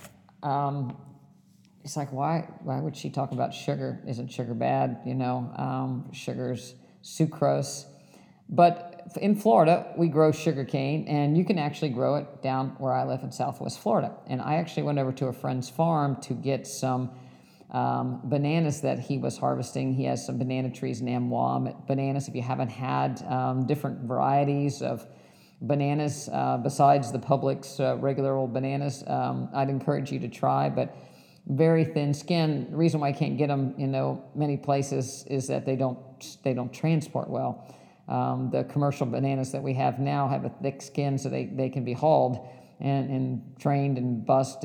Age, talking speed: 50-69, 175 wpm